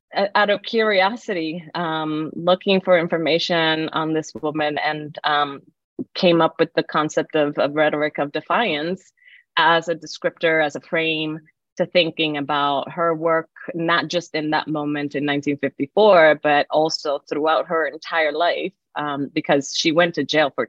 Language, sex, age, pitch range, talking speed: English, female, 20-39, 140-175 Hz, 155 wpm